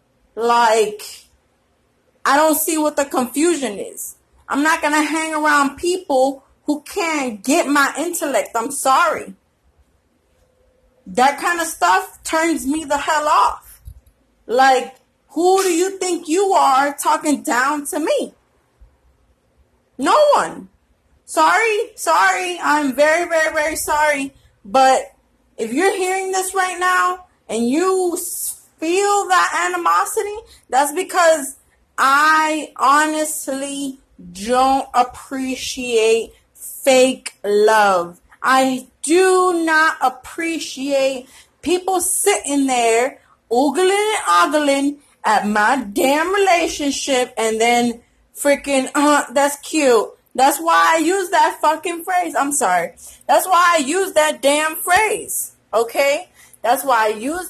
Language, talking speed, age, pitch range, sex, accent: English, 115 wpm, 20-39, 265-350 Hz, female, American